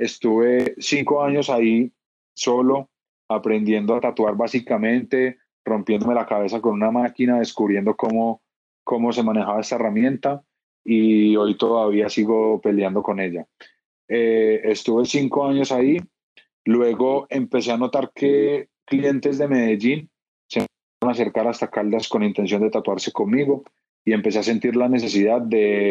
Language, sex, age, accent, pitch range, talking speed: Spanish, male, 30-49, Colombian, 105-125 Hz, 140 wpm